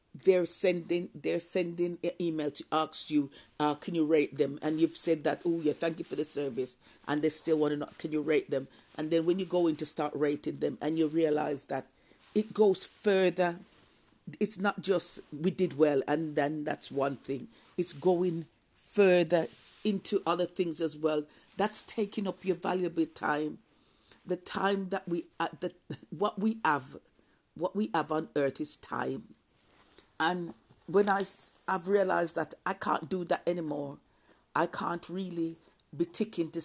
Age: 50-69